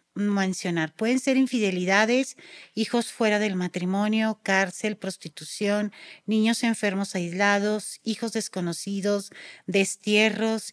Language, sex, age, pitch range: Spanish, female, 40-59, 190-215 Hz